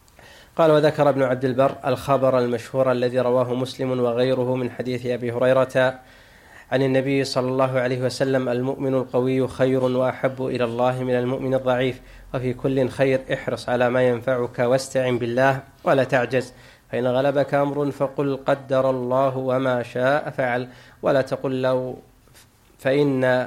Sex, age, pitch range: male, 20-39, 125-135 Hz